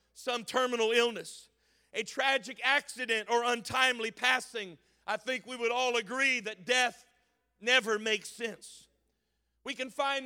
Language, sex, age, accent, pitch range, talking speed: English, male, 50-69, American, 235-265 Hz, 135 wpm